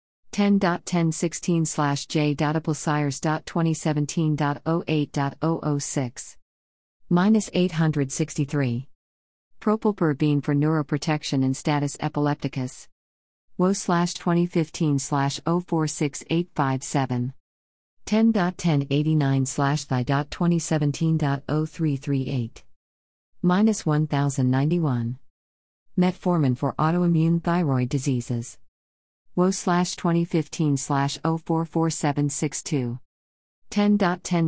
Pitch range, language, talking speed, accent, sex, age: 135-170 Hz, English, 45 wpm, American, female, 50-69